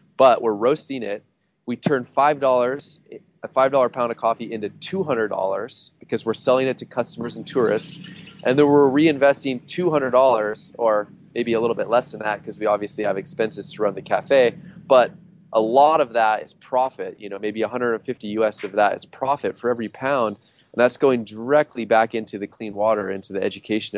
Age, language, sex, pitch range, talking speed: 20-39, English, male, 105-125 Hz, 205 wpm